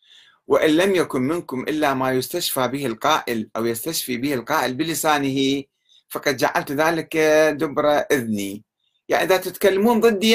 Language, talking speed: Arabic, 135 wpm